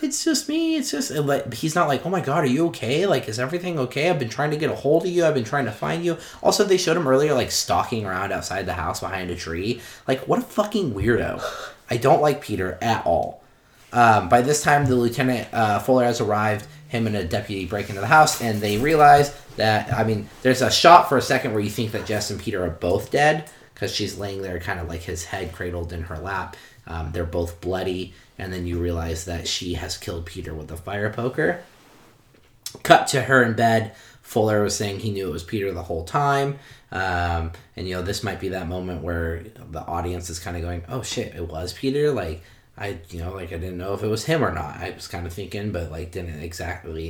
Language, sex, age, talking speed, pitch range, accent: English, male, 30-49, 240 wpm, 90-130 Hz, American